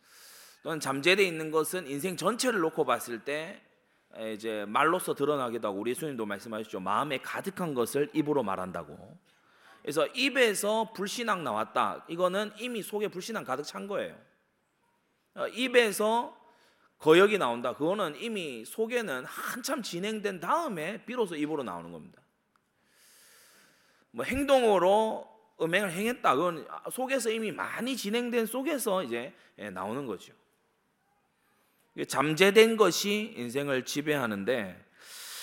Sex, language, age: male, Korean, 30-49